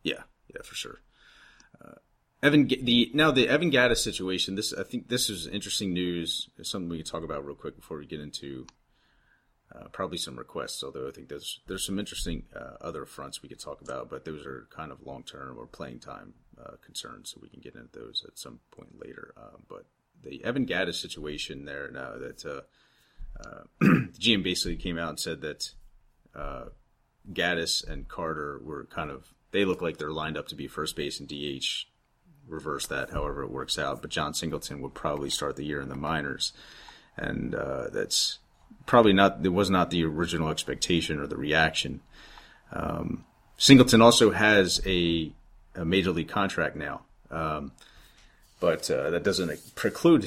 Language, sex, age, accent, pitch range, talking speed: English, male, 30-49, American, 75-100 Hz, 185 wpm